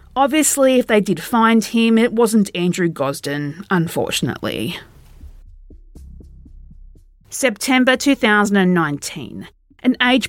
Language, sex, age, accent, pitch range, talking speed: English, female, 40-59, Australian, 175-235 Hz, 85 wpm